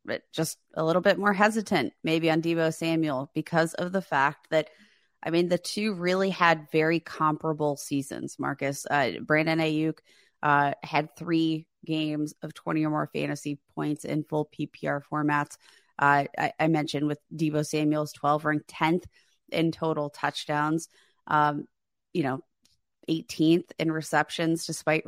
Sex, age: female, 30-49